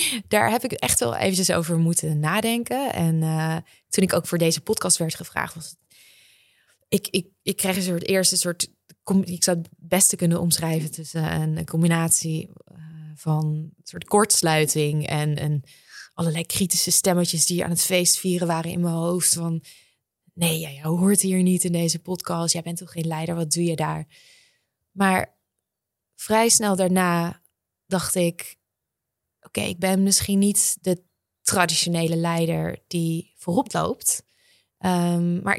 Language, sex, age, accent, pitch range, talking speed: Dutch, female, 20-39, Dutch, 165-190 Hz, 160 wpm